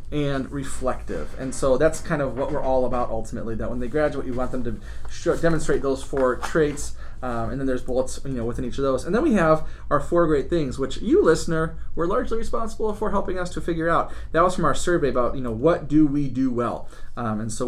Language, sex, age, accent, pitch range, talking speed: English, male, 30-49, American, 120-160 Hz, 245 wpm